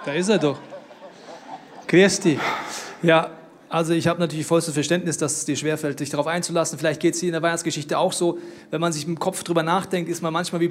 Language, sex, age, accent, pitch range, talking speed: German, male, 30-49, German, 165-195 Hz, 220 wpm